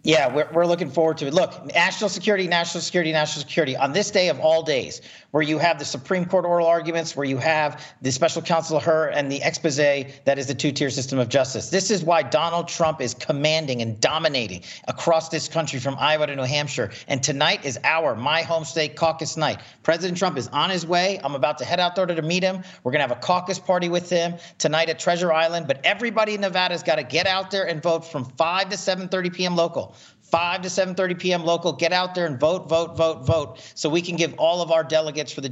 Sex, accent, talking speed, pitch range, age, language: male, American, 235 wpm, 140-175 Hz, 40-59, English